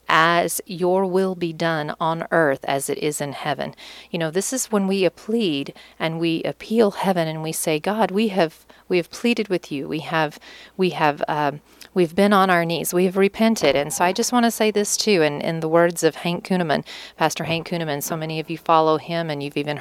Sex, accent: female, American